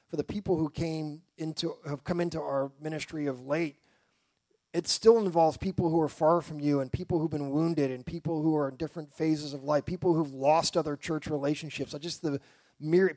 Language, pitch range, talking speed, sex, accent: English, 140-165 Hz, 210 wpm, male, American